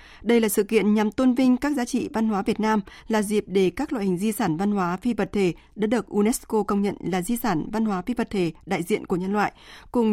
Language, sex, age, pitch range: Vietnamese, female, 20-39, 190-235 Hz